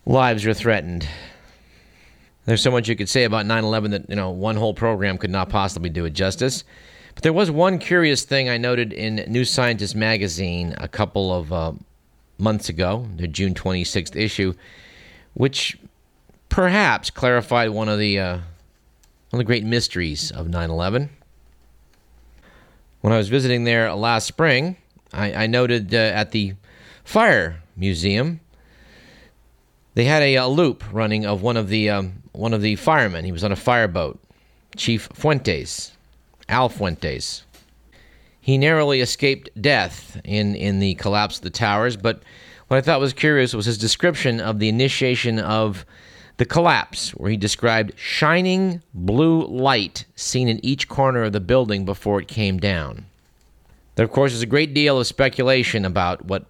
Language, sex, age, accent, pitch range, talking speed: English, male, 30-49, American, 95-125 Hz, 160 wpm